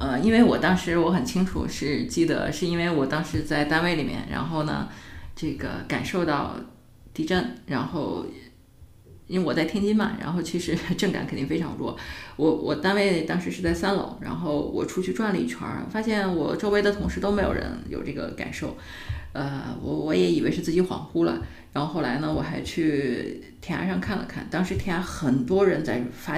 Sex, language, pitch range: female, Chinese, 150-195 Hz